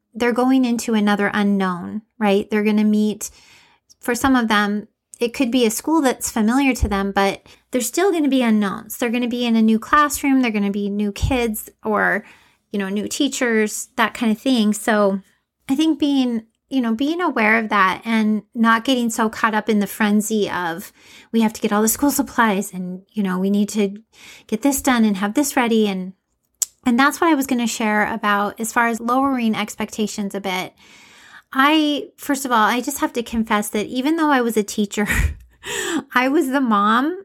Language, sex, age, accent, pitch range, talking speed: English, female, 30-49, American, 205-255 Hz, 210 wpm